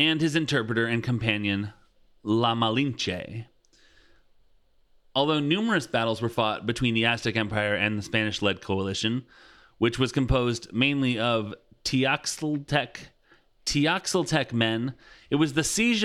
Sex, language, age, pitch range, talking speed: male, English, 30-49, 110-145 Hz, 115 wpm